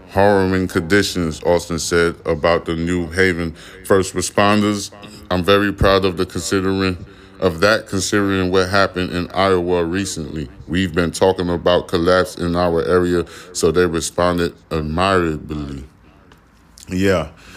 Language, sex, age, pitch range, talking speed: English, male, 20-39, 85-100 Hz, 125 wpm